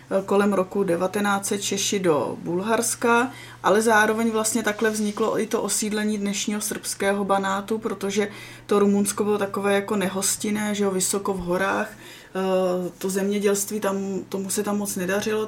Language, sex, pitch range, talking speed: Czech, female, 195-215 Hz, 145 wpm